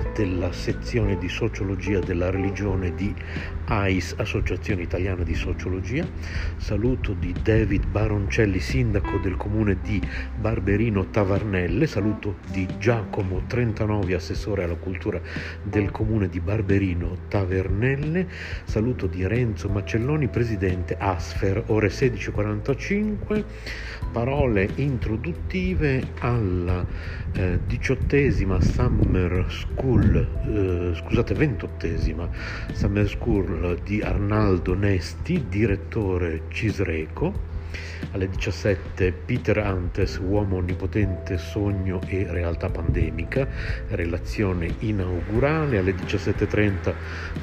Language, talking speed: Italian, 90 wpm